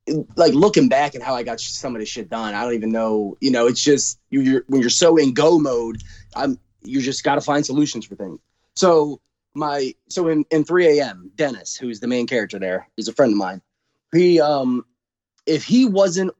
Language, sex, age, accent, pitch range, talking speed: English, male, 20-39, American, 120-160 Hz, 220 wpm